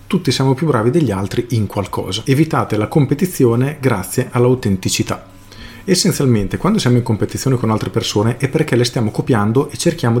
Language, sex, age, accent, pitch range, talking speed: Italian, male, 40-59, native, 100-125 Hz, 165 wpm